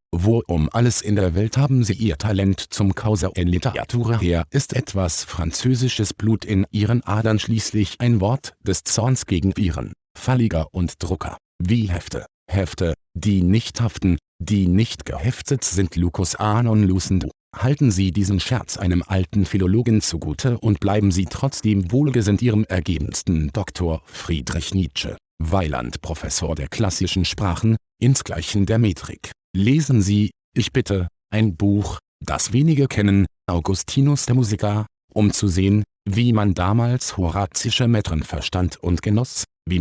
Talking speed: 145 wpm